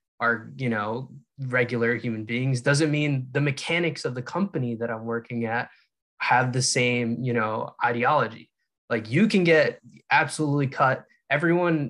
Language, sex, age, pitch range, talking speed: English, male, 20-39, 120-150 Hz, 150 wpm